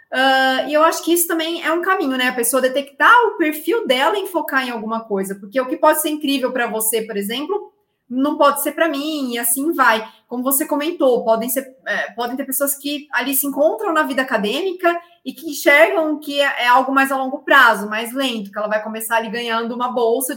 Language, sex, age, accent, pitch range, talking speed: Portuguese, female, 20-39, Brazilian, 225-295 Hz, 225 wpm